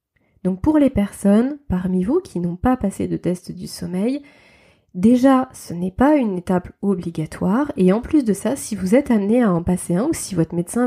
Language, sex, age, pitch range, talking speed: French, female, 20-39, 180-225 Hz, 210 wpm